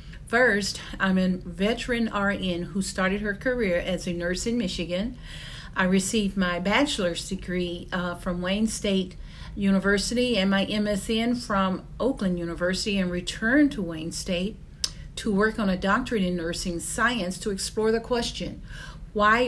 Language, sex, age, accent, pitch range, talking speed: English, female, 50-69, American, 180-220 Hz, 150 wpm